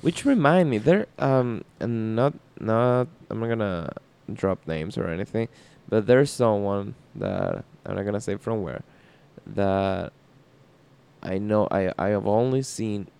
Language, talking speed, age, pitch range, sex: English, 160 wpm, 20-39, 105-135 Hz, male